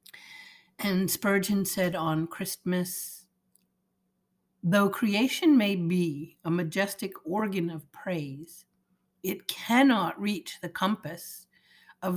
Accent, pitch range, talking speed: American, 175-200 Hz, 100 wpm